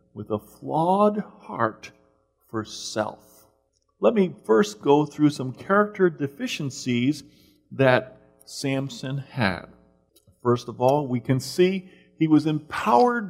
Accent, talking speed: American, 115 wpm